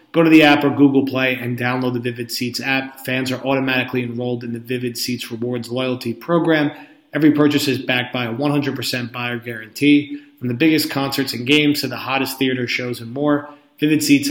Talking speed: 200 wpm